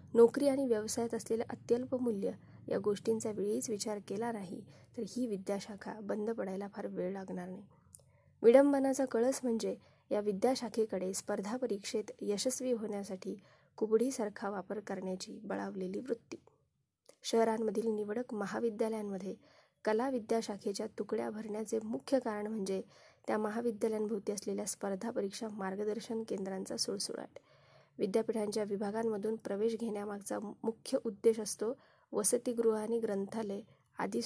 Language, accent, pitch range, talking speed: Marathi, native, 205-230 Hz, 110 wpm